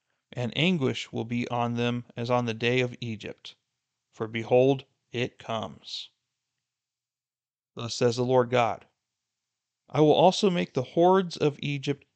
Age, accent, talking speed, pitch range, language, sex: 40-59, American, 145 wpm, 120-140 Hz, English, male